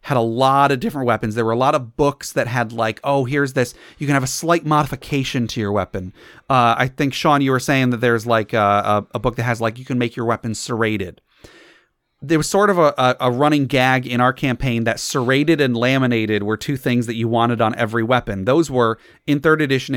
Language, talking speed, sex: English, 240 wpm, male